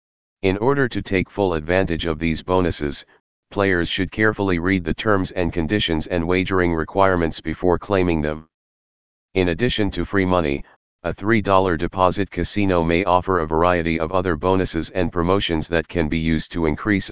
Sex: male